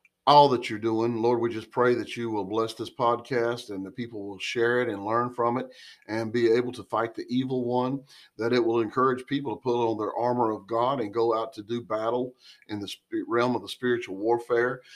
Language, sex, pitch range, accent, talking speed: English, male, 110-135 Hz, American, 230 wpm